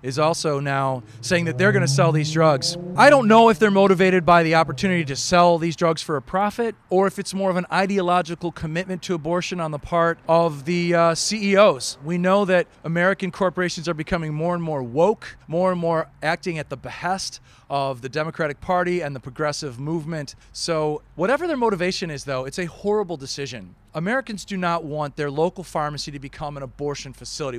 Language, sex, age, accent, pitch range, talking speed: English, male, 40-59, American, 145-190 Hz, 200 wpm